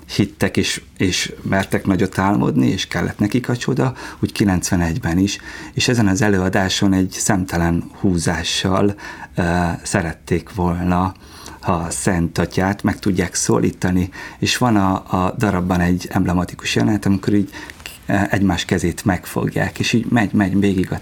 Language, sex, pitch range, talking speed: Hungarian, male, 85-105 Hz, 135 wpm